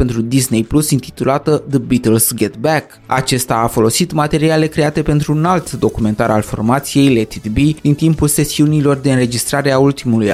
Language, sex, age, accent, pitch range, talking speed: Romanian, male, 20-39, native, 115-150 Hz, 170 wpm